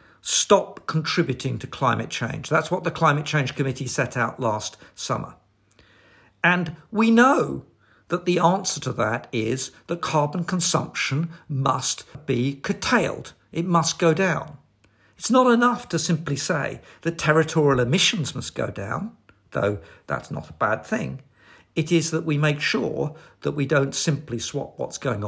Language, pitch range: English, 115-160 Hz